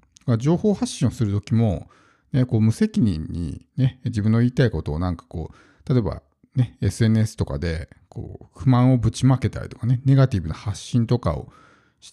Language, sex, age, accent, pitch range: Japanese, male, 50-69, native, 100-140 Hz